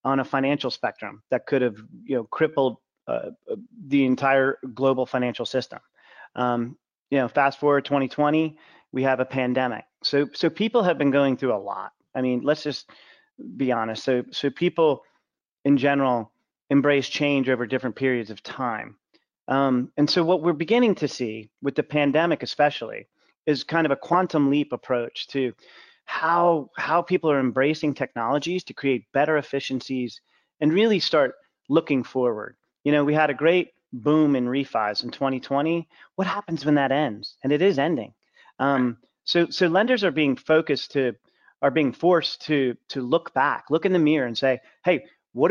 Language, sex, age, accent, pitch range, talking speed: English, male, 30-49, American, 130-165 Hz, 175 wpm